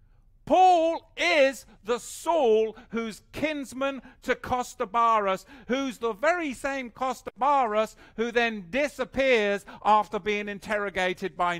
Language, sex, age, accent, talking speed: English, male, 50-69, British, 105 wpm